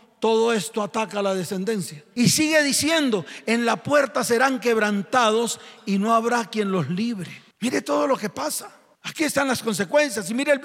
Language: Spanish